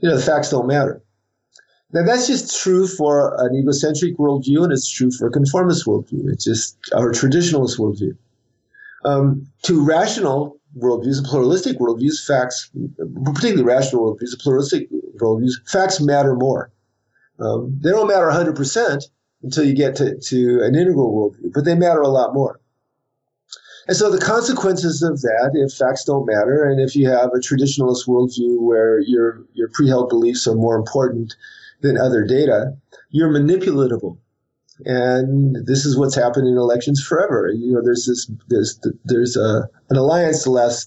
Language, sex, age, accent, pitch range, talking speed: English, male, 50-69, American, 125-155 Hz, 160 wpm